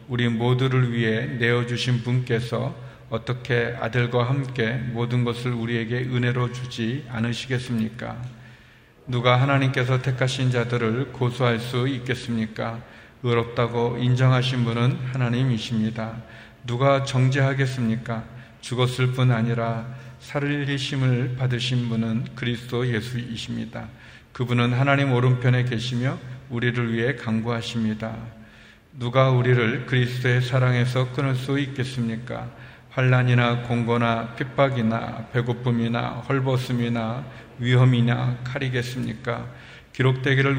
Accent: native